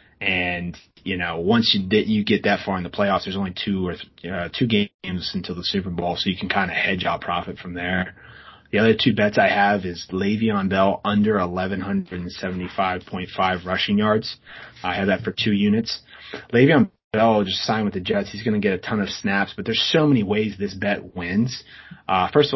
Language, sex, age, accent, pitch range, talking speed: English, male, 30-49, American, 95-110 Hz, 200 wpm